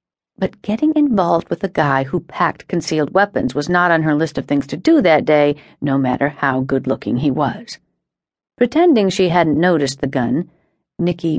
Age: 50-69